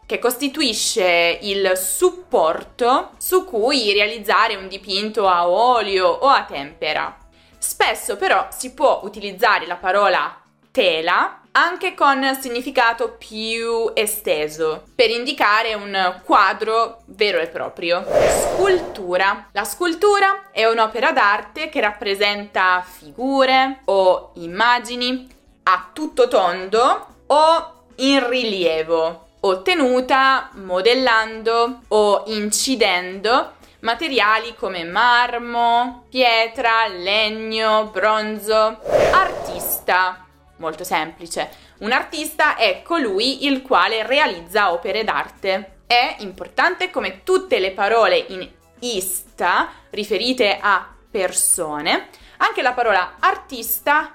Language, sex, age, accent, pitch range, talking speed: Italian, female, 20-39, native, 195-265 Hz, 100 wpm